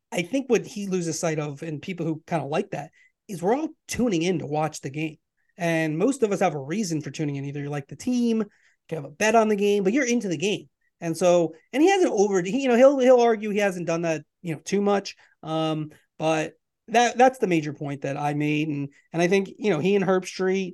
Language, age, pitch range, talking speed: English, 30-49, 155-190 Hz, 260 wpm